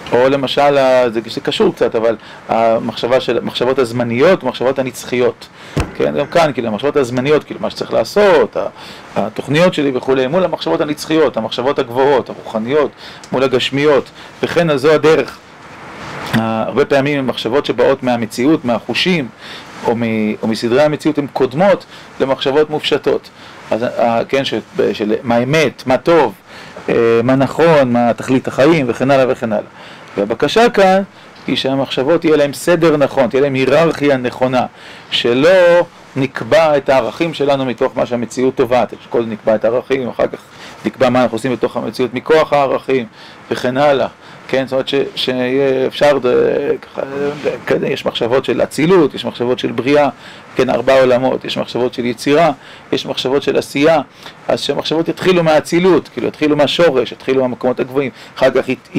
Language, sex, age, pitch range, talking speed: Hebrew, male, 40-59, 125-150 Hz, 145 wpm